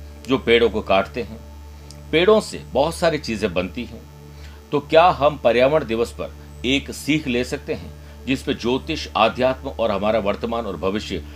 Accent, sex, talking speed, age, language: native, male, 170 wpm, 60-79, Hindi